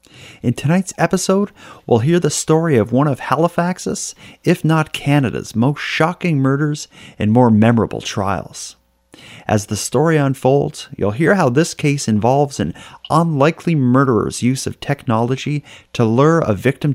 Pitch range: 105-140 Hz